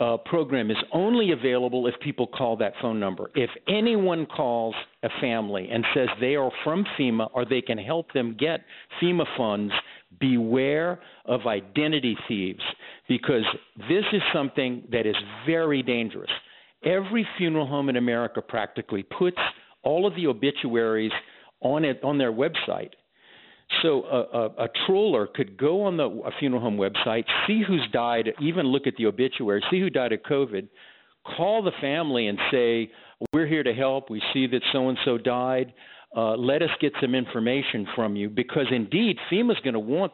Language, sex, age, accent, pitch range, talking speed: English, male, 50-69, American, 115-155 Hz, 170 wpm